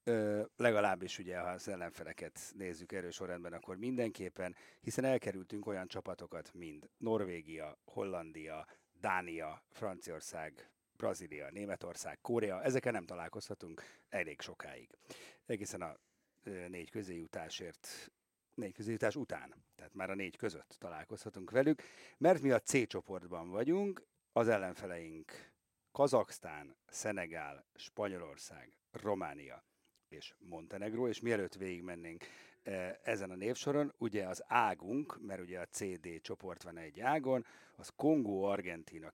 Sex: male